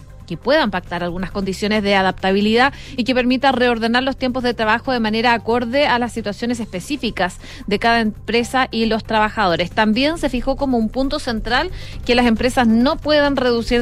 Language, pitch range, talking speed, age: Spanish, 215-260 Hz, 180 wpm, 30-49